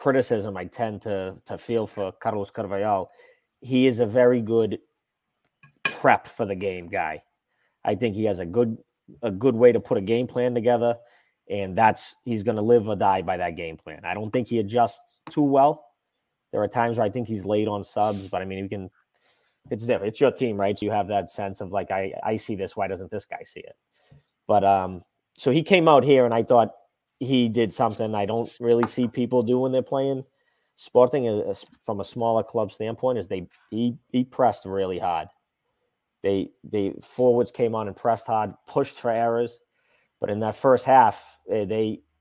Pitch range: 100-120 Hz